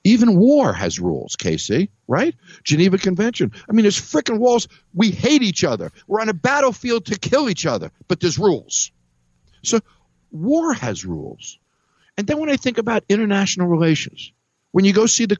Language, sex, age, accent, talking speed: English, male, 60-79, American, 175 wpm